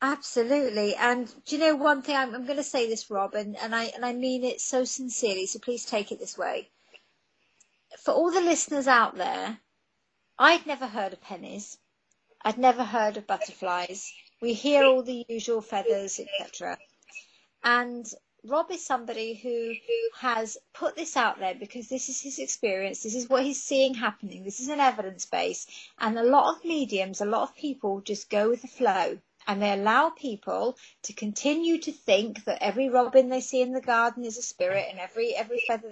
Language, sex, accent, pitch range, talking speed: English, female, British, 215-275 Hz, 190 wpm